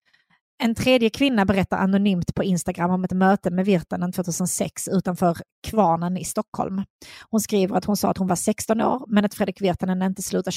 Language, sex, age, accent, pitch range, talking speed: Swedish, female, 30-49, native, 185-210 Hz, 185 wpm